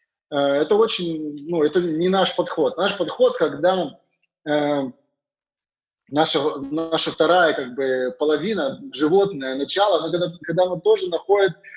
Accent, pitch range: native, 150-200 Hz